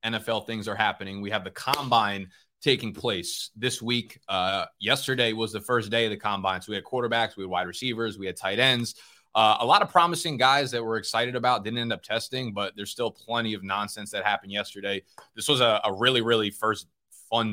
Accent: American